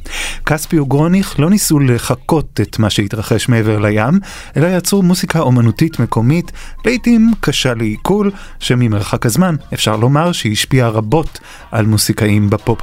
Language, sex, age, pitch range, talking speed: Hebrew, male, 30-49, 115-160 Hz, 130 wpm